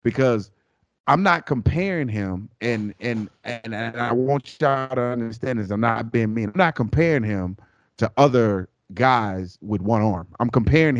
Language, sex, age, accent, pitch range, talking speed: English, male, 30-49, American, 100-140 Hz, 170 wpm